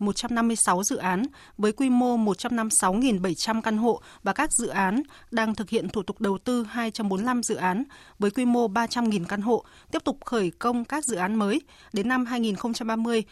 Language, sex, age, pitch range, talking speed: Vietnamese, female, 20-39, 195-240 Hz, 180 wpm